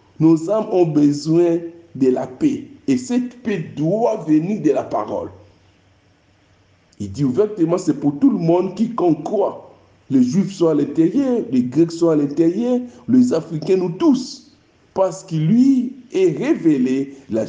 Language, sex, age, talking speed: French, male, 60-79, 155 wpm